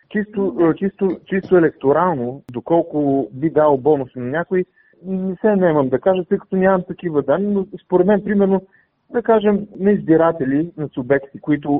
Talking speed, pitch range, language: 160 wpm, 120-165 Hz, Bulgarian